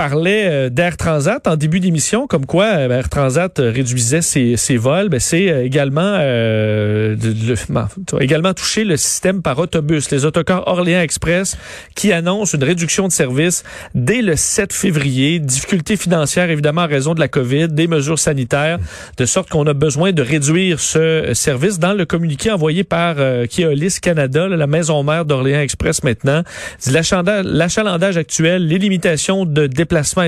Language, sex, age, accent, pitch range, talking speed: French, male, 40-59, Canadian, 140-175 Hz, 170 wpm